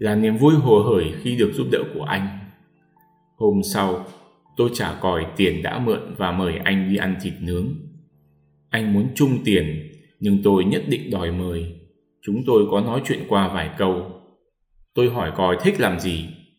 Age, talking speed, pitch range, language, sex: 20-39, 180 wpm, 95-145 Hz, Vietnamese, male